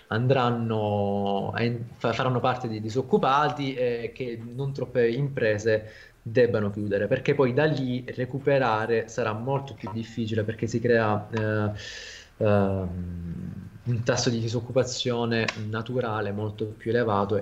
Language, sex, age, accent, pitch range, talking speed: Italian, male, 20-39, native, 110-135 Hz, 115 wpm